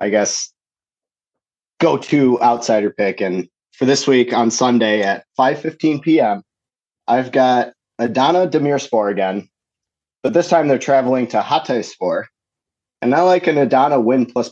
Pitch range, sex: 110-140 Hz, male